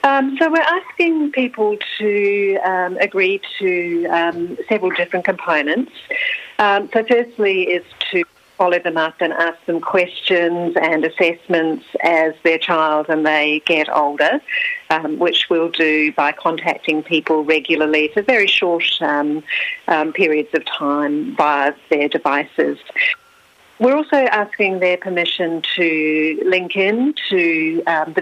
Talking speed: 135 wpm